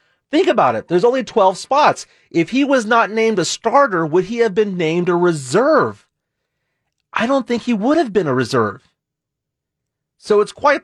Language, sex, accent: English, male, American